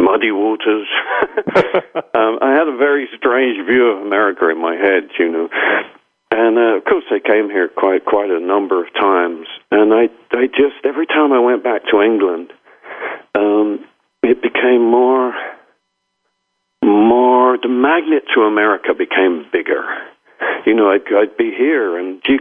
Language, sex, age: English, male, 60-79